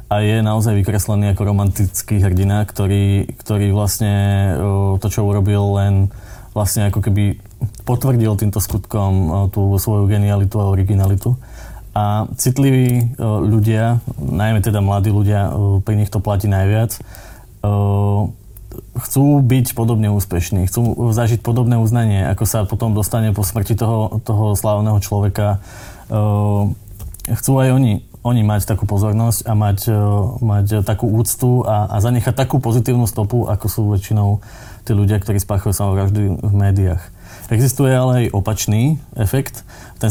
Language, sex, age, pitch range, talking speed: Slovak, male, 20-39, 100-115 Hz, 130 wpm